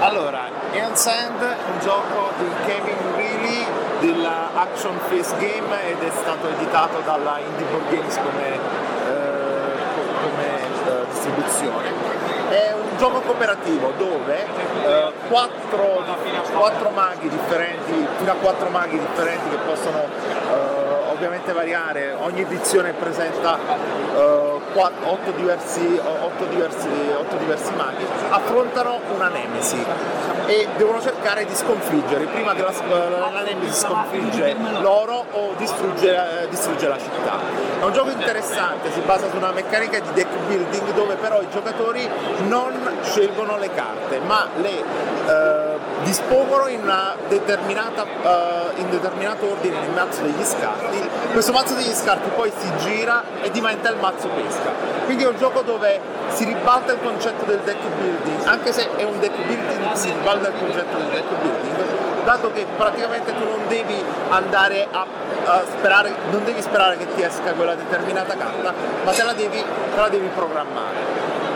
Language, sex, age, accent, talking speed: Italian, male, 30-49, native, 140 wpm